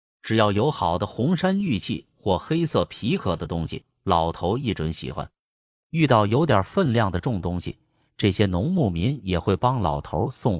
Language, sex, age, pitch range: Chinese, male, 30-49, 85-130 Hz